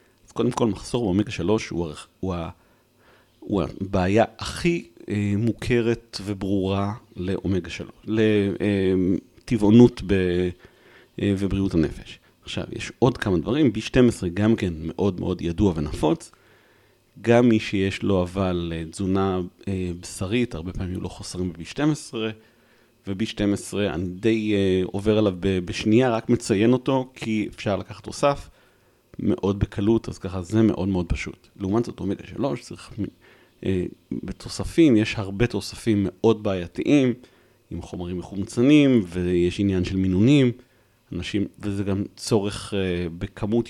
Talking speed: 125 wpm